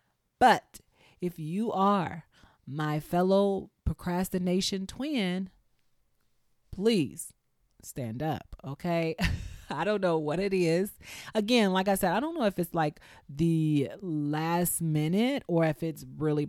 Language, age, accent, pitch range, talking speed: English, 30-49, American, 145-180 Hz, 125 wpm